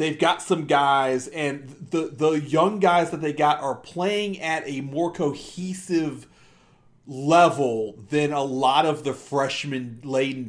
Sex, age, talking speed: male, 40-59, 145 wpm